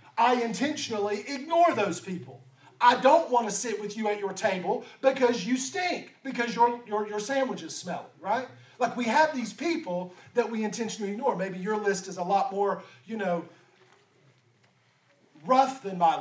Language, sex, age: English, male, 40-59